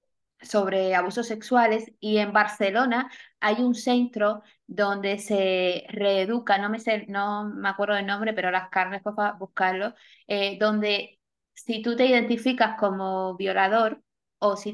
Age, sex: 20-39, female